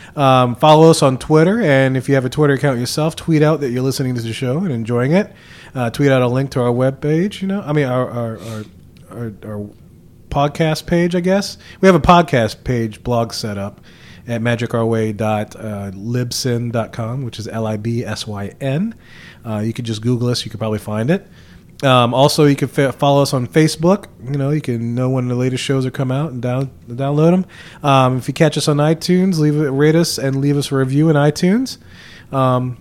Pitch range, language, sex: 120-155 Hz, English, male